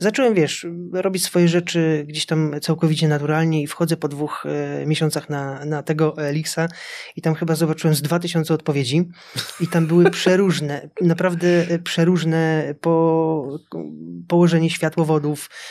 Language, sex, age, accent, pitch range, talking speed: Polish, male, 20-39, native, 150-170 Hz, 135 wpm